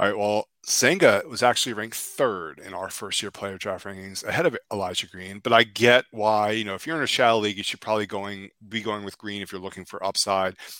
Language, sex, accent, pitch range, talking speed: English, male, American, 100-120 Hz, 245 wpm